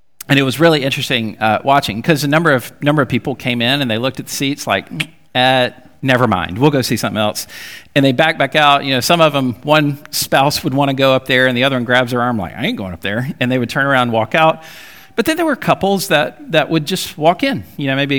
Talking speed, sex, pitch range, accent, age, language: 275 wpm, male, 120-165 Hz, American, 40-59, English